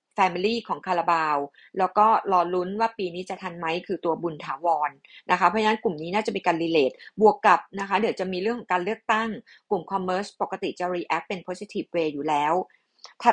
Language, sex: Thai, female